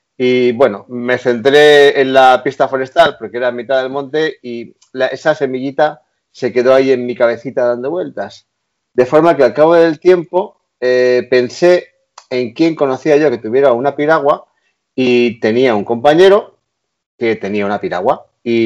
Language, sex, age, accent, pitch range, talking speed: Spanish, male, 40-59, Spanish, 120-160 Hz, 165 wpm